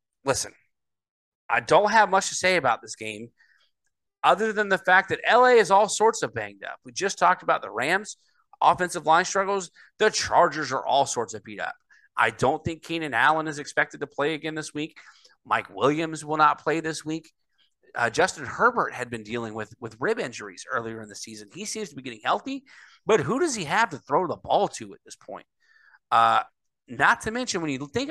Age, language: 30-49, English